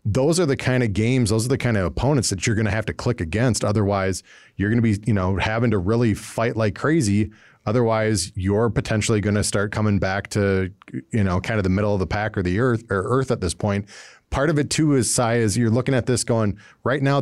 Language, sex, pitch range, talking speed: English, male, 100-120 Hz, 250 wpm